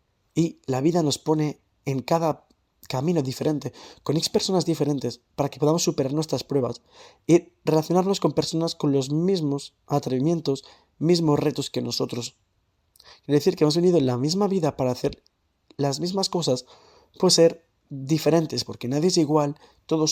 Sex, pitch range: male, 125-160 Hz